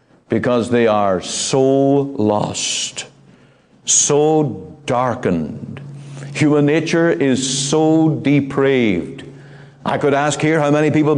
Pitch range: 145-200 Hz